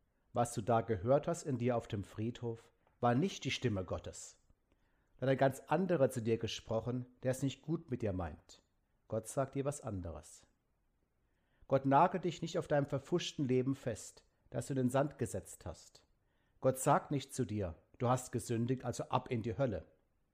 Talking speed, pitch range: 185 wpm, 115-140 Hz